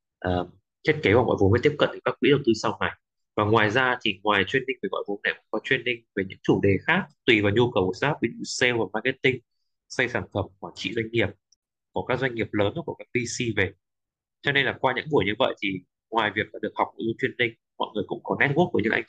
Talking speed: 265 wpm